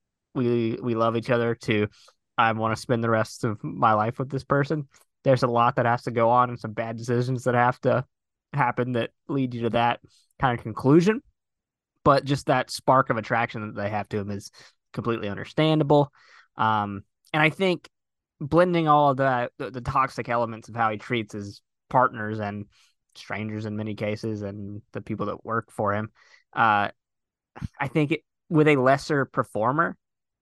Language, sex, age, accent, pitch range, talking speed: English, male, 20-39, American, 110-140 Hz, 185 wpm